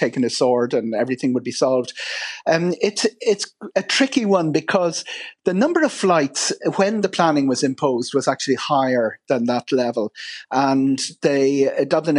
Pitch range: 130-160 Hz